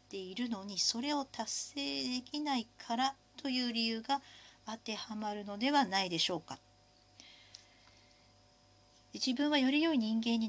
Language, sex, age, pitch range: Japanese, female, 50-69, 180-265 Hz